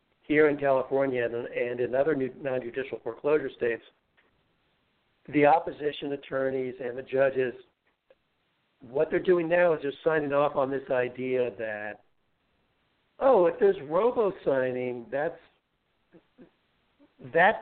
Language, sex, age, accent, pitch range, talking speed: English, male, 60-79, American, 125-160 Hz, 120 wpm